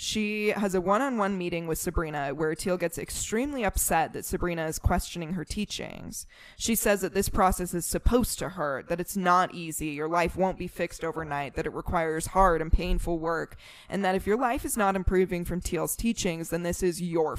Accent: American